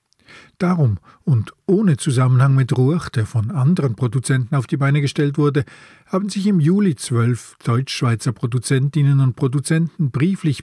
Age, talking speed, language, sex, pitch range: 50-69, 140 wpm, German, male, 120-155 Hz